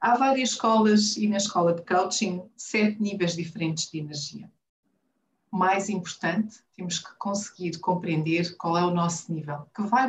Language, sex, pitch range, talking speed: Portuguese, female, 165-210 Hz, 155 wpm